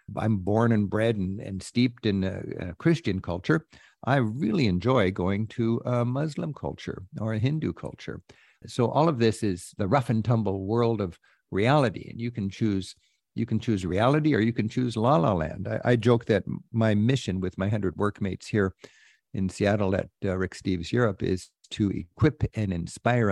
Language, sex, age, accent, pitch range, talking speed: English, male, 60-79, American, 100-120 Hz, 190 wpm